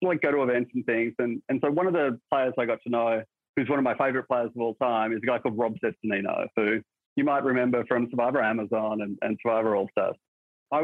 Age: 40-59